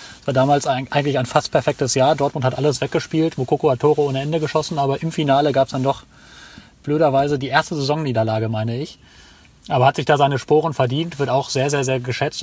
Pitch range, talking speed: 120-140 Hz, 210 wpm